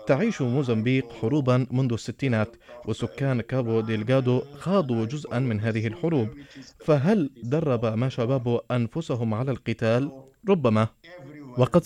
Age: 30-49